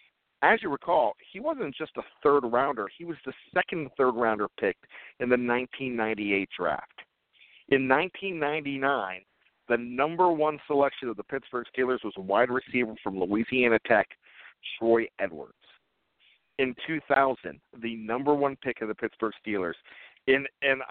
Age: 50-69